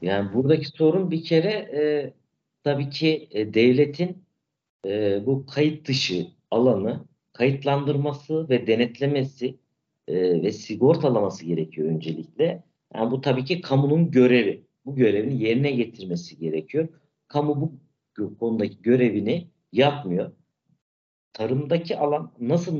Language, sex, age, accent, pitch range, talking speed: Turkish, male, 50-69, native, 110-140 Hz, 110 wpm